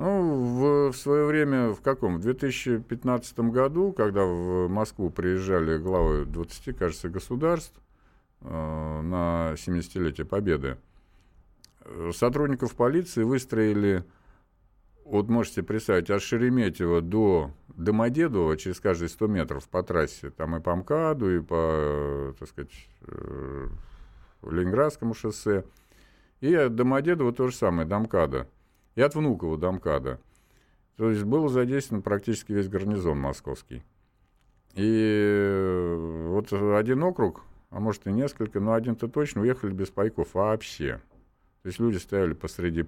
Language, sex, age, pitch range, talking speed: Russian, male, 50-69, 85-115 Hz, 125 wpm